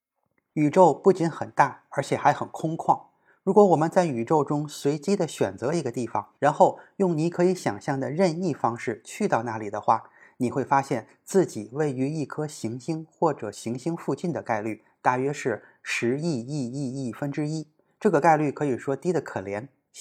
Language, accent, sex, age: Chinese, native, male, 20-39